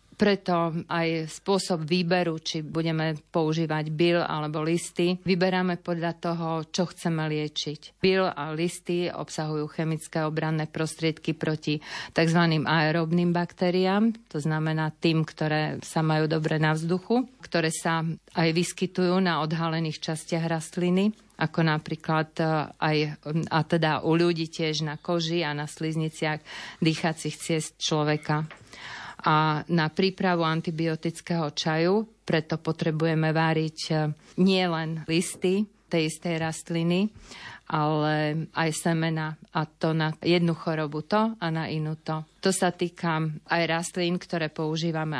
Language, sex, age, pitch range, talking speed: Slovak, female, 40-59, 155-175 Hz, 125 wpm